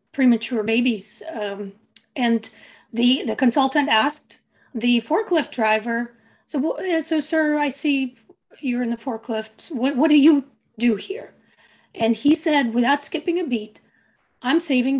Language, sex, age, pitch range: English, female, 40-59, 240-305 Hz